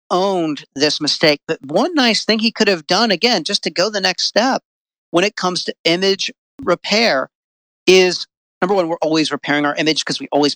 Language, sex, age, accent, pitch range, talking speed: English, male, 40-59, American, 150-185 Hz, 200 wpm